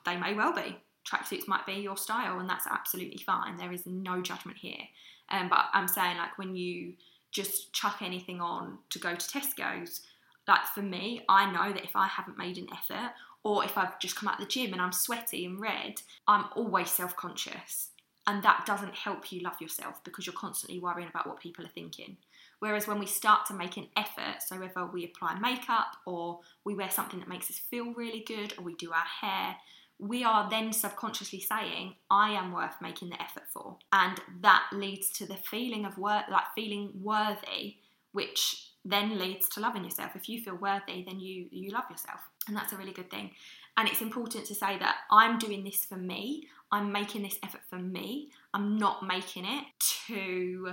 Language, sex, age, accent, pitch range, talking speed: English, female, 10-29, British, 185-215 Hz, 205 wpm